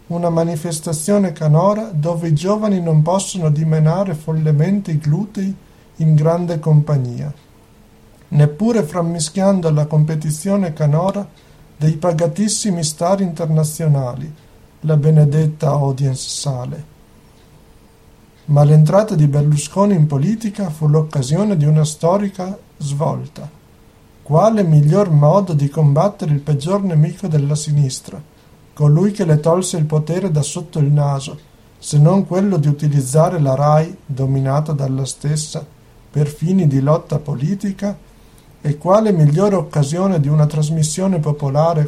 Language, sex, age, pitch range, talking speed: Italian, male, 50-69, 150-175 Hz, 120 wpm